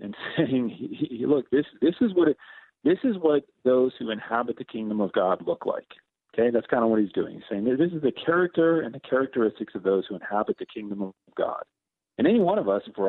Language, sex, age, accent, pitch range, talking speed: English, male, 40-59, American, 105-135 Hz, 245 wpm